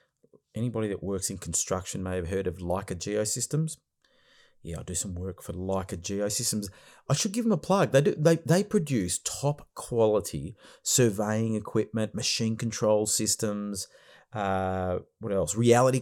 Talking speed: 150 wpm